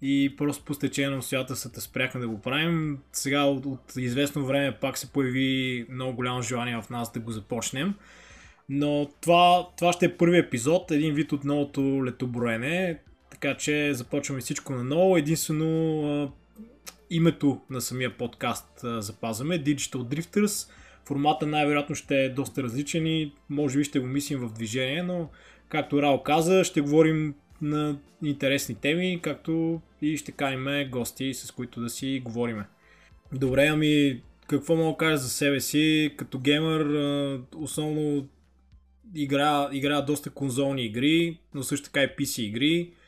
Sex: male